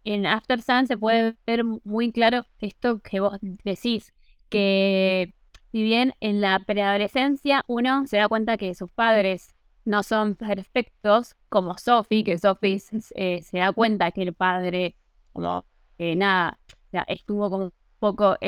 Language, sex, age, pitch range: Spanish, female, 20-39, 185-230 Hz